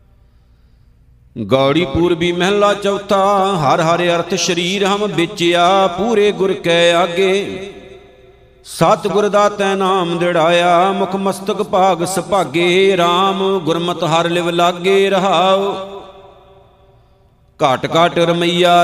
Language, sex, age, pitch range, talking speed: Punjabi, male, 50-69, 170-195 Hz, 105 wpm